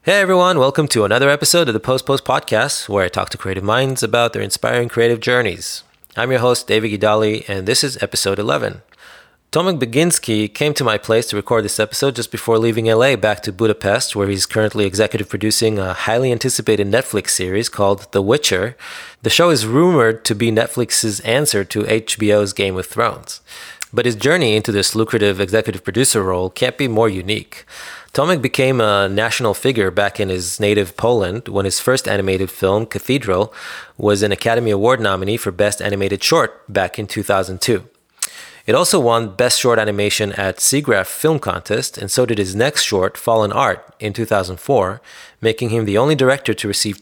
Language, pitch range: English, 100-125 Hz